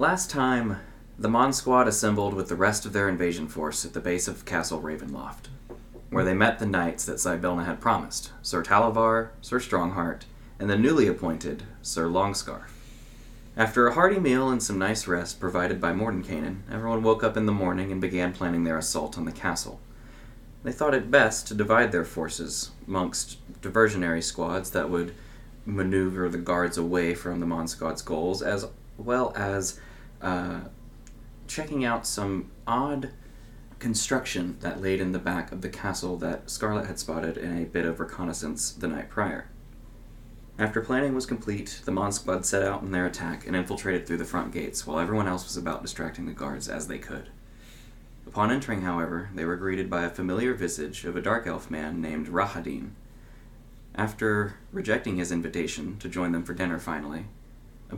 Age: 20-39